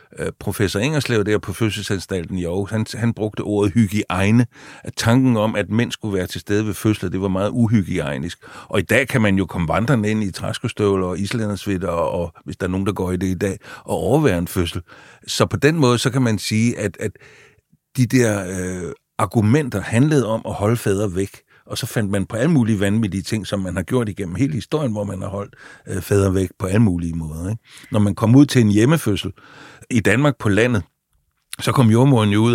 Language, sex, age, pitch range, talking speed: Danish, male, 60-79, 95-120 Hz, 220 wpm